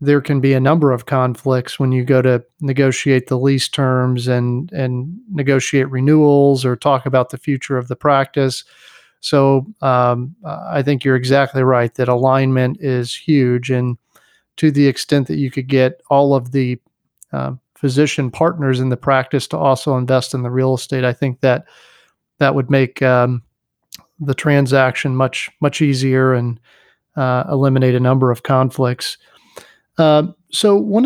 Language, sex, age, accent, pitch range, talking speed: English, male, 40-59, American, 130-145 Hz, 160 wpm